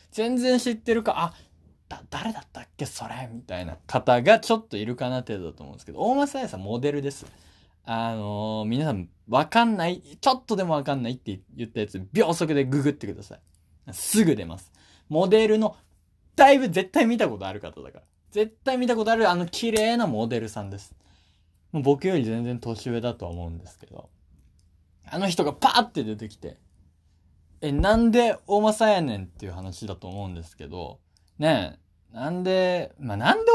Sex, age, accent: male, 20-39, native